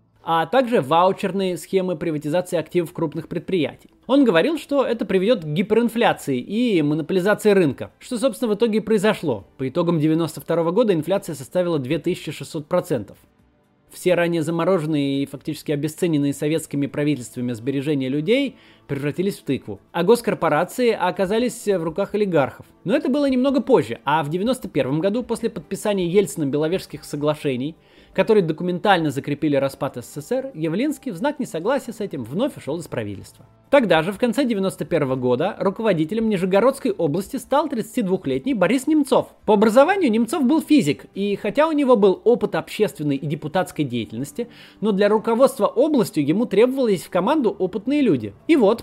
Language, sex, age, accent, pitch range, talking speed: Russian, male, 20-39, native, 155-230 Hz, 145 wpm